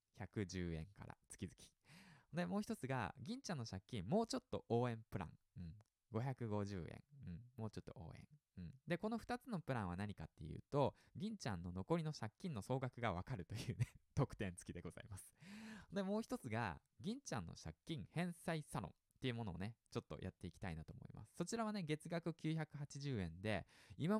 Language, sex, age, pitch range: Japanese, male, 20-39, 100-165 Hz